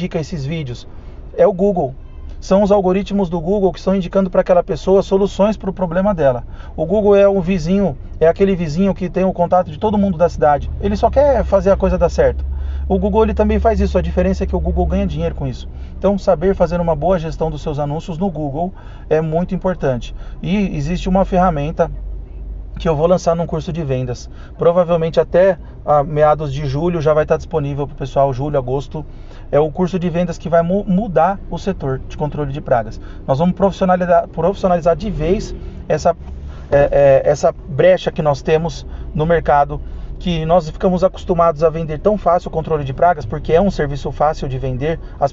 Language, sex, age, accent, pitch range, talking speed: Portuguese, male, 40-59, Brazilian, 145-185 Hz, 205 wpm